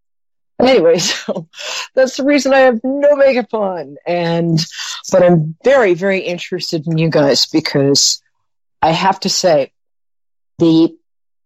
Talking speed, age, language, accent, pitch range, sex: 130 wpm, 50-69, English, American, 145-225 Hz, female